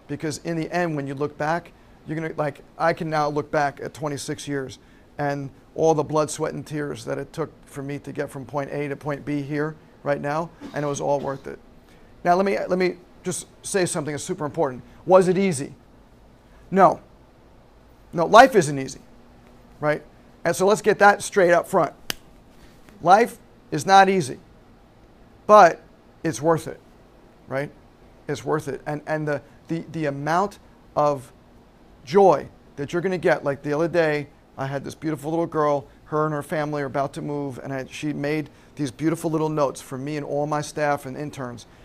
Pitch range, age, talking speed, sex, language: 145-170 Hz, 40-59, 195 wpm, male, English